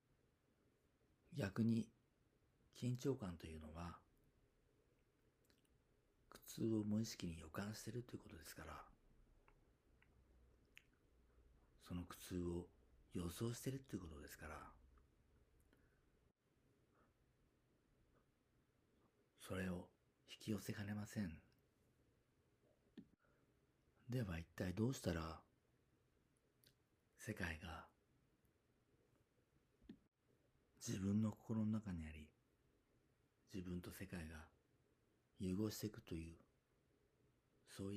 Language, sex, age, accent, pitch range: Japanese, male, 50-69, native, 85-110 Hz